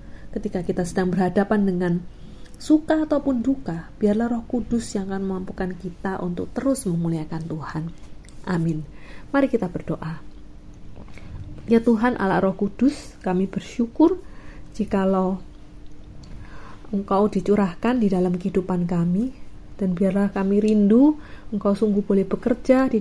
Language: Indonesian